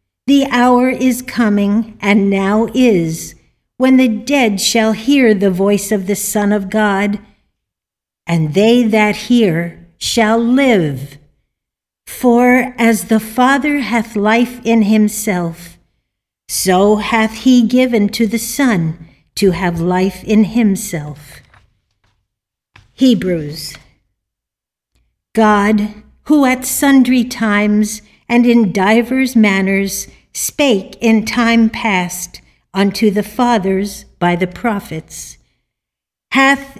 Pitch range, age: 190-245 Hz, 60-79